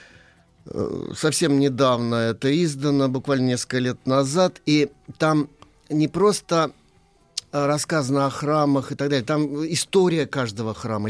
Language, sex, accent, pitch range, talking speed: Russian, male, native, 125-150 Hz, 120 wpm